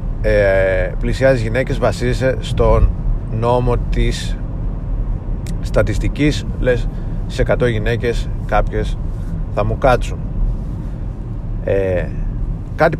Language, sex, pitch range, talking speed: Greek, male, 100-125 Hz, 75 wpm